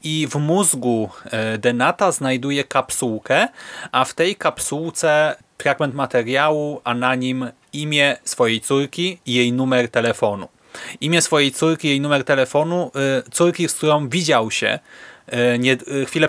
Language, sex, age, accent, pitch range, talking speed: Polish, male, 30-49, native, 120-150 Hz, 130 wpm